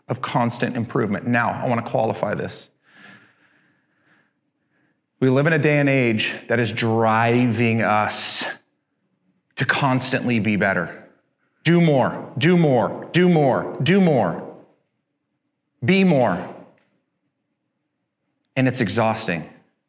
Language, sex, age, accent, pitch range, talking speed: English, male, 40-59, American, 115-155 Hz, 110 wpm